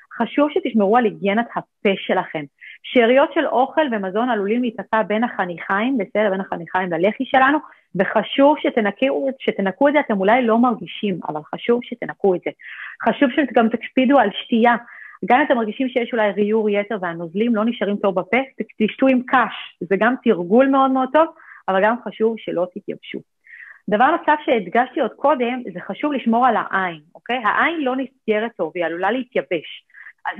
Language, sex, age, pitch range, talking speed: English, female, 40-59, 190-255 Hz, 145 wpm